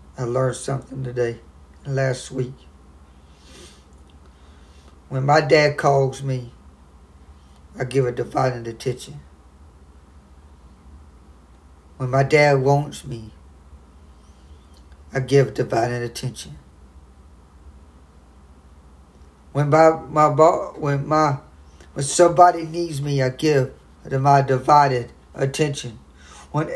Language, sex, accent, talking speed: English, male, American, 90 wpm